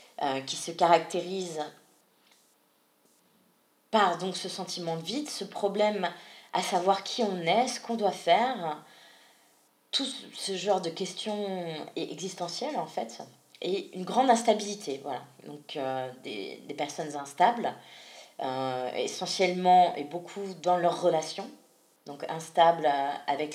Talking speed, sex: 125 wpm, female